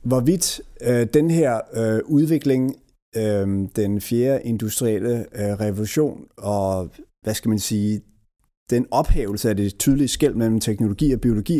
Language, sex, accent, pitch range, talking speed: Danish, male, native, 105-140 Hz, 140 wpm